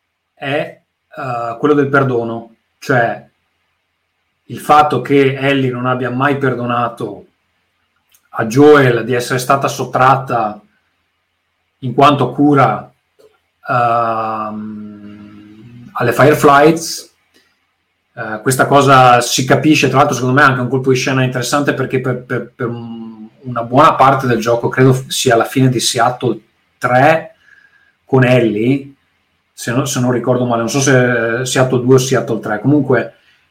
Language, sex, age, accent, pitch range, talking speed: Italian, male, 30-49, native, 115-140 Hz, 140 wpm